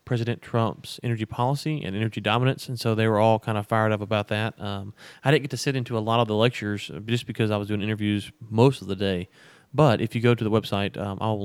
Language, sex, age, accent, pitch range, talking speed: English, male, 30-49, American, 105-125 Hz, 255 wpm